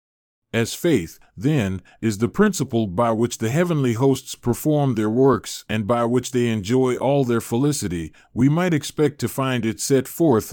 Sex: male